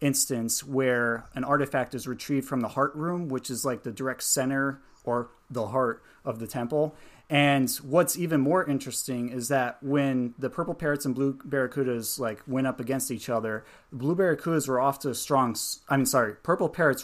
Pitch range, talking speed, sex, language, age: 115-140 Hz, 190 wpm, male, English, 30-49